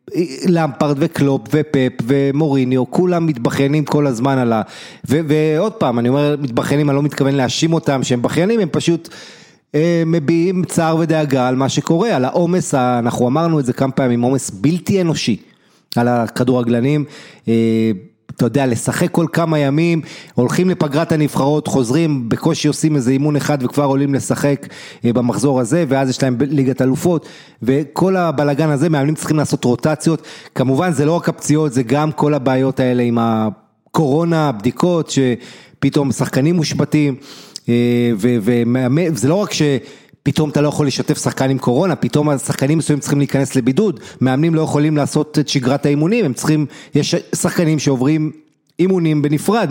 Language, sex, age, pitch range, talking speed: Hebrew, male, 30-49, 130-160 Hz, 155 wpm